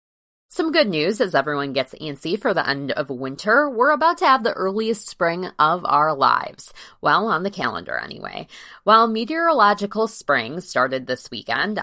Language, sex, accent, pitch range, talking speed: English, female, American, 155-235 Hz, 165 wpm